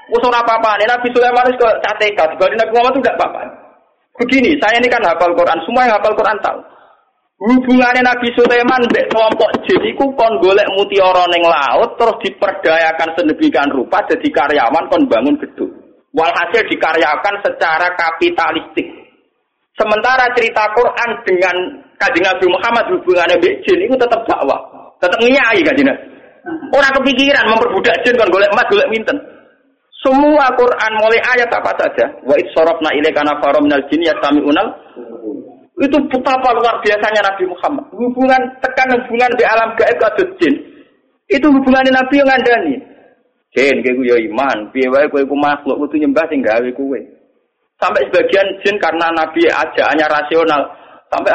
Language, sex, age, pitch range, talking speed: Malay, male, 40-59, 180-260 Hz, 140 wpm